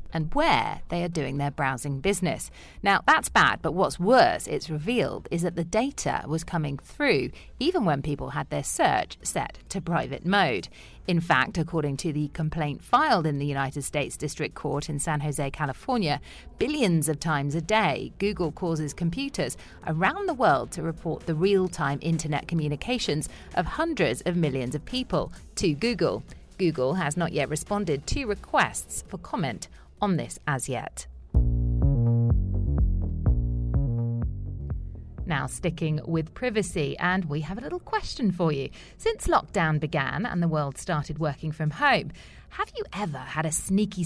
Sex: female